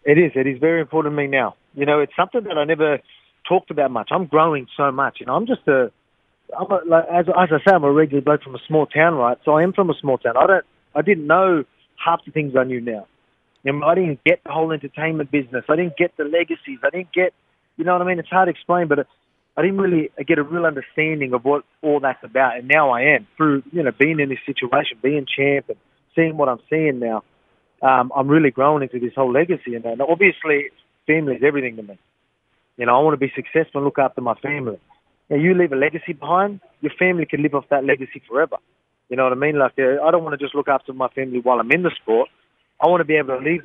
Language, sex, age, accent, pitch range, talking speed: English, male, 30-49, Australian, 135-165 Hz, 255 wpm